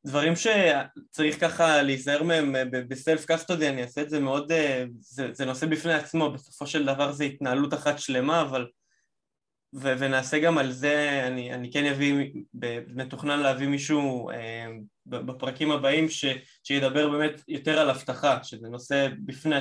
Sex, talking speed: male, 160 wpm